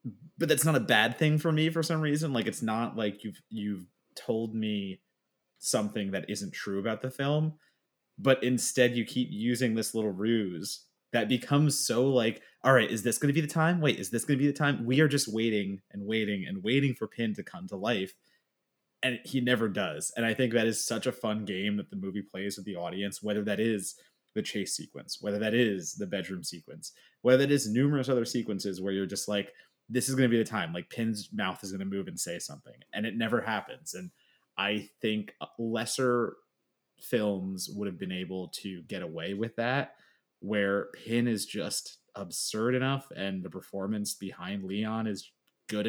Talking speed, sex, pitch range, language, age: 210 wpm, male, 100-130 Hz, English, 20-39